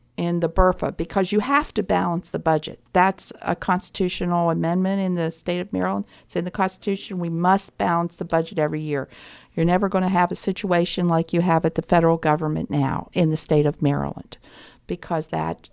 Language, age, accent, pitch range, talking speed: English, 50-69, American, 160-200 Hz, 200 wpm